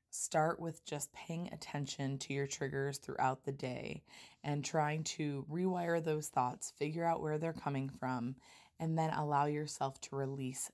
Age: 20-39